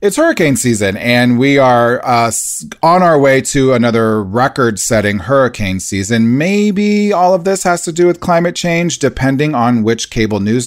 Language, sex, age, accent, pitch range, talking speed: English, male, 30-49, American, 100-135 Hz, 175 wpm